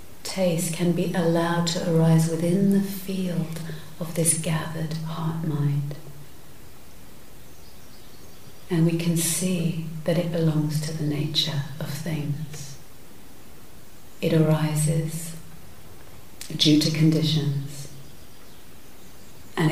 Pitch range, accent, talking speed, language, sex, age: 160-180 Hz, British, 90 wpm, English, female, 40-59